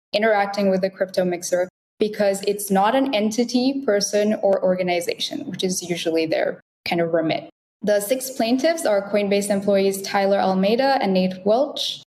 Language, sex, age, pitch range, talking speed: English, female, 10-29, 180-210 Hz, 155 wpm